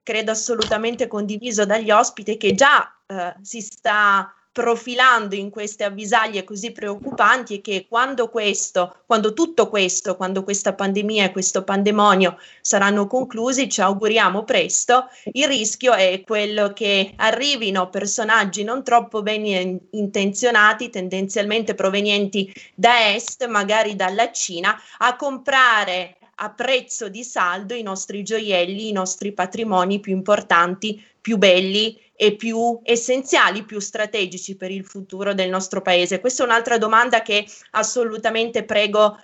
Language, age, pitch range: Italian, 20-39, 200-230 Hz